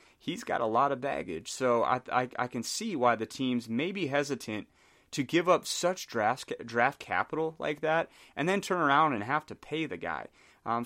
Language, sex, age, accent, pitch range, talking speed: English, male, 30-49, American, 110-140 Hz, 210 wpm